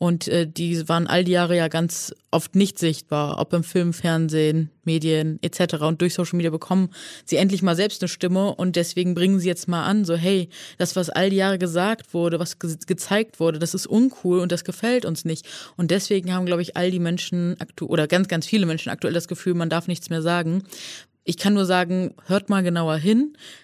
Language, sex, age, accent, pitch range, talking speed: German, female, 20-39, German, 165-185 Hz, 215 wpm